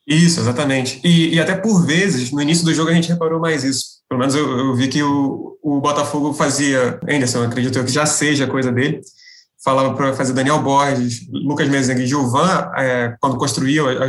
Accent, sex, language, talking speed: Brazilian, male, Portuguese, 200 wpm